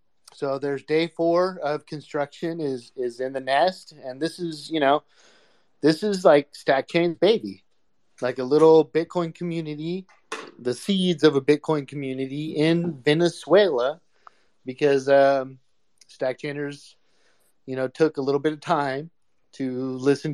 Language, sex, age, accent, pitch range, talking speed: English, male, 30-49, American, 135-155 Hz, 140 wpm